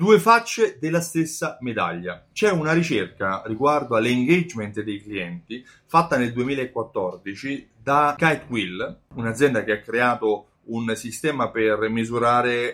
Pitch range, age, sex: 110-170 Hz, 30-49, male